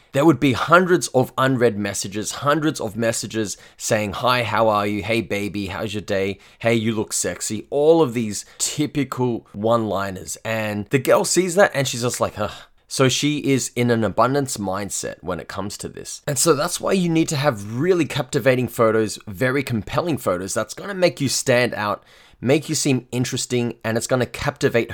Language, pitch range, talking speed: English, 100-130 Hz, 195 wpm